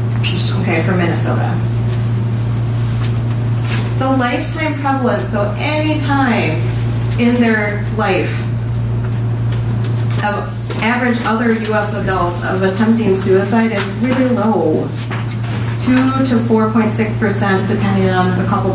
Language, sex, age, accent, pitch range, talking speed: English, female, 30-49, American, 115-120 Hz, 95 wpm